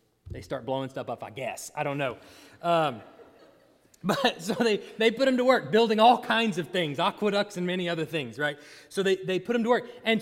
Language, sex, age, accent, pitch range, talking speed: English, male, 30-49, American, 175-260 Hz, 225 wpm